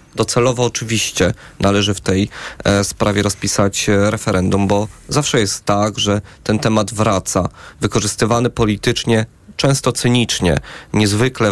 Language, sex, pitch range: Polish, male, 100-120 Hz